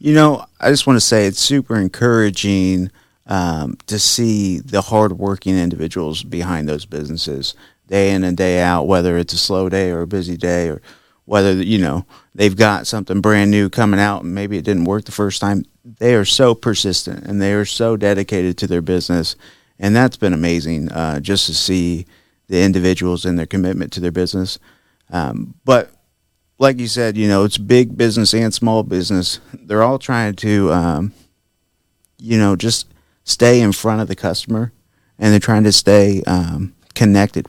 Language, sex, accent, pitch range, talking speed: English, male, American, 90-110 Hz, 180 wpm